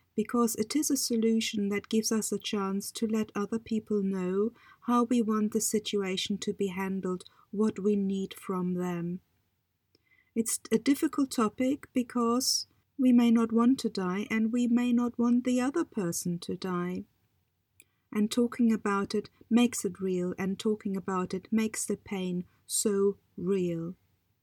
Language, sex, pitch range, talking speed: English, female, 200-240 Hz, 160 wpm